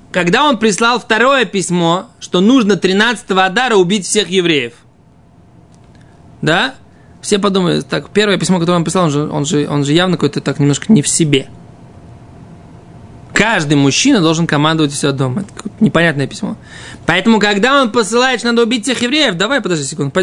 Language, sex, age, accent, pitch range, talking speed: Russian, male, 20-39, native, 175-235 Hz, 155 wpm